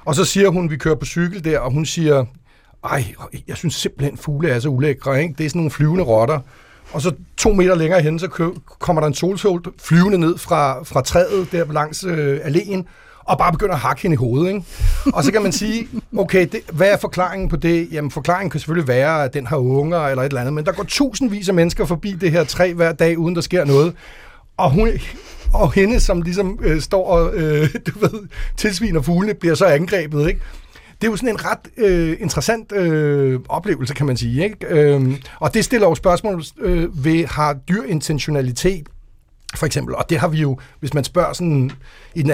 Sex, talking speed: male, 215 wpm